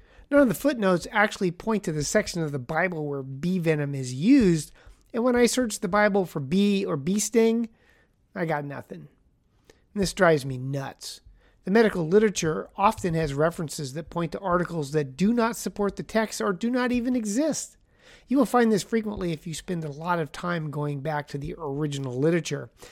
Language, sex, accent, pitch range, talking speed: English, male, American, 150-205 Hz, 195 wpm